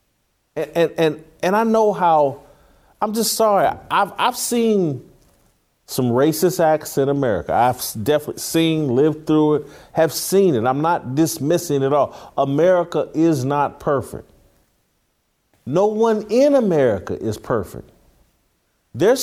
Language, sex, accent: English, male, American